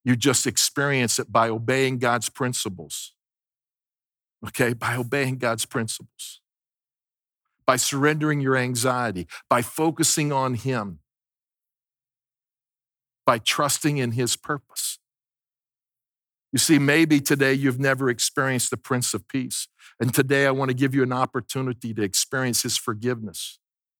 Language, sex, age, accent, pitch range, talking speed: English, male, 50-69, American, 120-140 Hz, 125 wpm